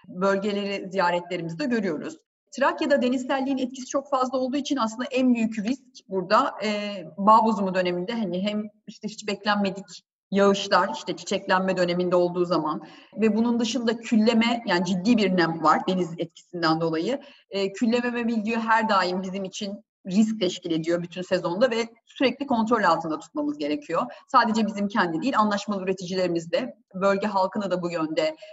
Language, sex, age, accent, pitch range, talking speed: Turkish, female, 30-49, native, 185-245 Hz, 155 wpm